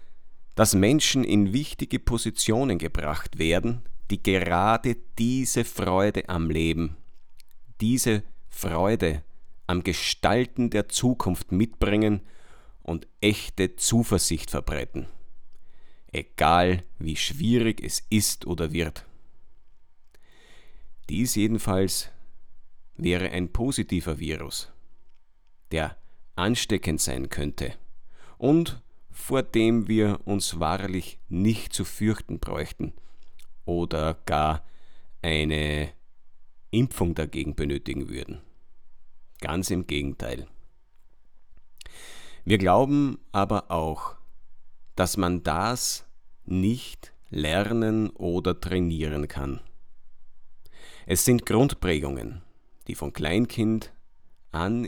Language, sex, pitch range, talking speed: German, male, 80-110 Hz, 85 wpm